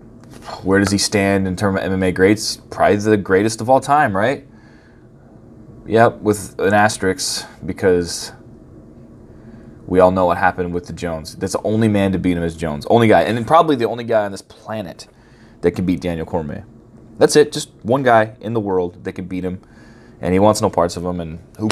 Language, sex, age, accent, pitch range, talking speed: English, male, 20-39, American, 95-115 Hz, 210 wpm